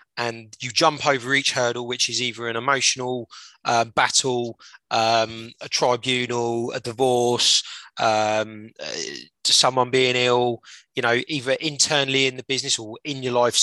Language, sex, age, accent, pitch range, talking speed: English, male, 20-39, British, 120-150 Hz, 155 wpm